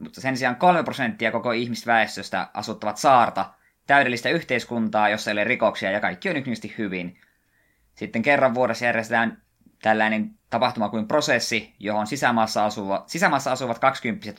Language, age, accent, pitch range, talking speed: Finnish, 20-39, native, 105-130 Hz, 140 wpm